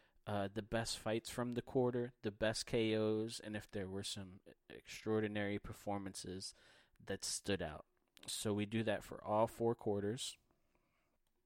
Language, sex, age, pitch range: English, male, 30-49, 95-110 Hz